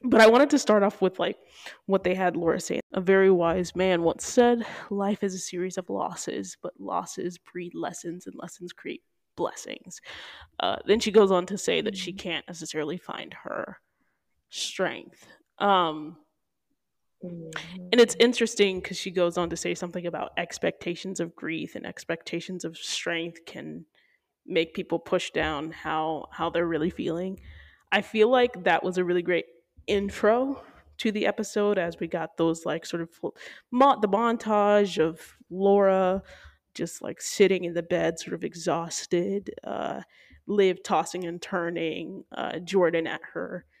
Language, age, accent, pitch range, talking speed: English, 10-29, American, 170-200 Hz, 160 wpm